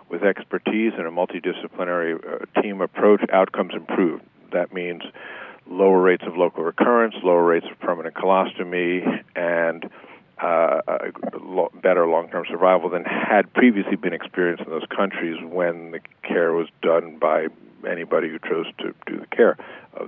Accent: American